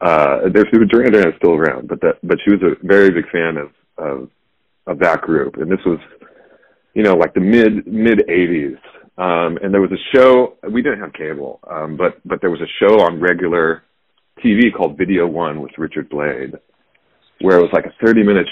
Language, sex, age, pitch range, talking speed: English, male, 40-59, 90-110 Hz, 205 wpm